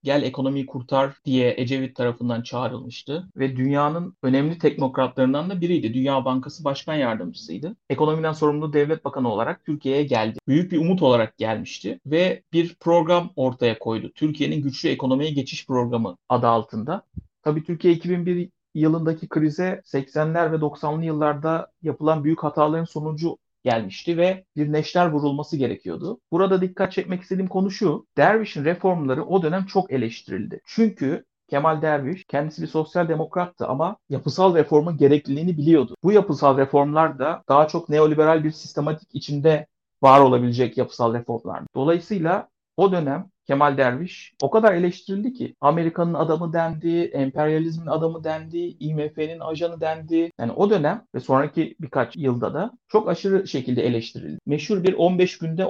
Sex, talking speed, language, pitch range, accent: male, 140 wpm, Turkish, 140-175 Hz, native